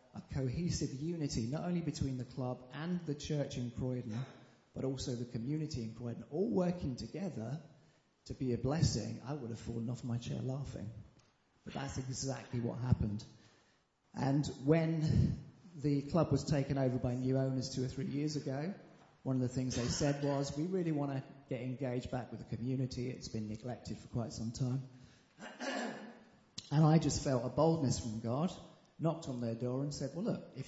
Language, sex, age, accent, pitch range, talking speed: English, male, 30-49, British, 120-145 Hz, 185 wpm